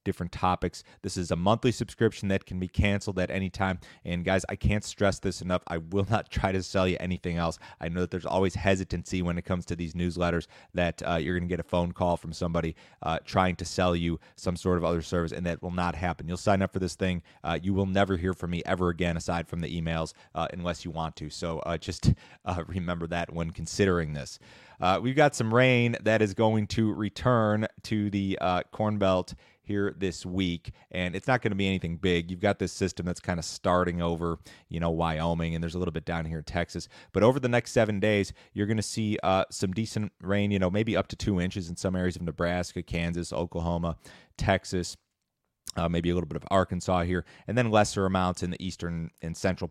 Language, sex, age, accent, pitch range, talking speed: English, male, 30-49, American, 85-100 Hz, 235 wpm